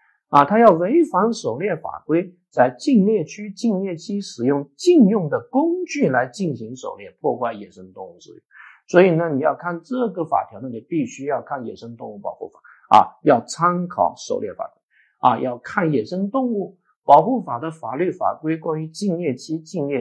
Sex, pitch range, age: male, 155-255 Hz, 50-69